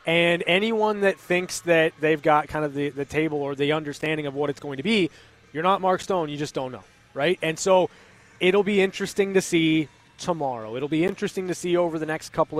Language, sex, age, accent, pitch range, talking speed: English, male, 20-39, American, 150-185 Hz, 225 wpm